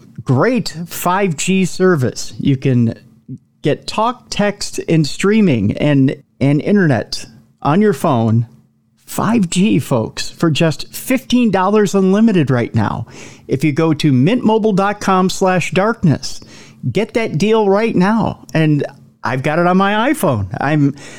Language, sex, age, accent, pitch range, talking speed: English, male, 40-59, American, 130-205 Hz, 125 wpm